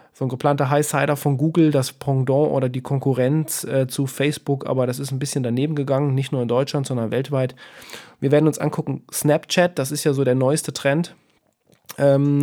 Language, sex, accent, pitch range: German, male, German, 130-155 Hz